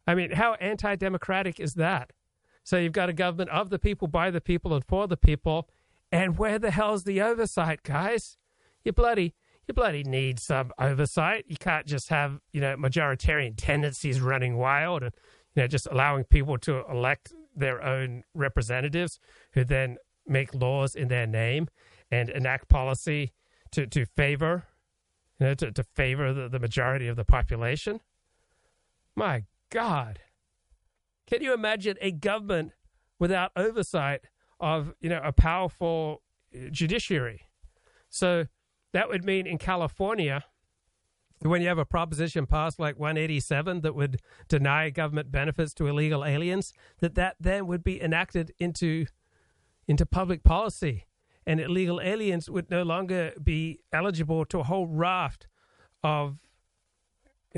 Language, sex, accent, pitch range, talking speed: English, male, American, 135-180 Hz, 150 wpm